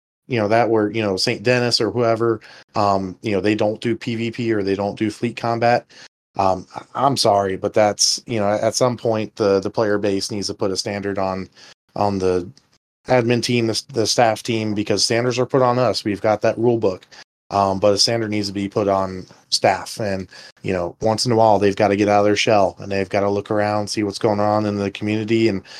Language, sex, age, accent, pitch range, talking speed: English, male, 20-39, American, 100-115 Hz, 235 wpm